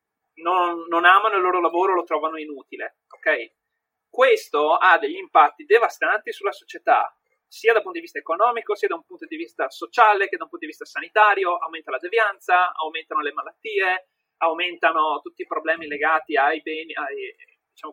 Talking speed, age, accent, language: 175 wpm, 30-49, native, Italian